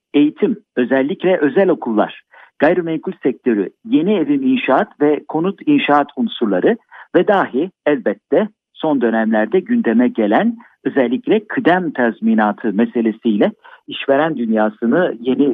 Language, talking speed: Turkish, 105 wpm